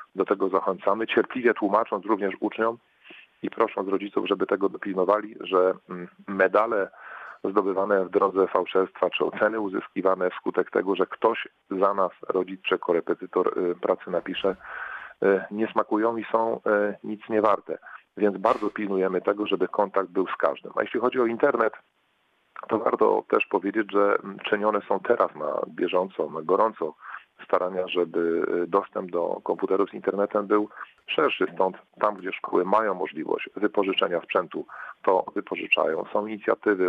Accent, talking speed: native, 140 wpm